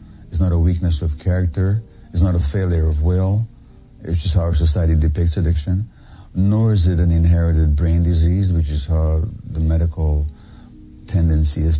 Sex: male